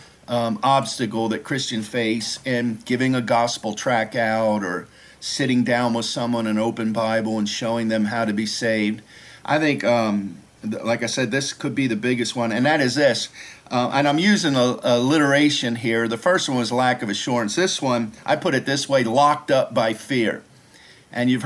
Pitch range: 115-135 Hz